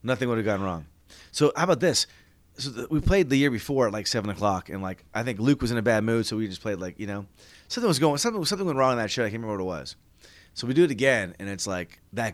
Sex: male